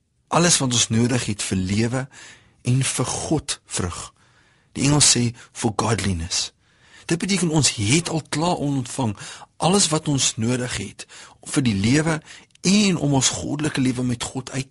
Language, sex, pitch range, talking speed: English, male, 105-140 Hz, 160 wpm